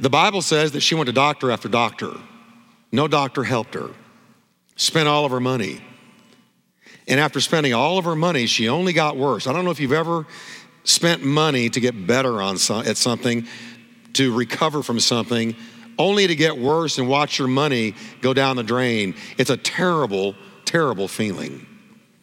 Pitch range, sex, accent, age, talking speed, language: 125-170 Hz, male, American, 50-69, 175 wpm, English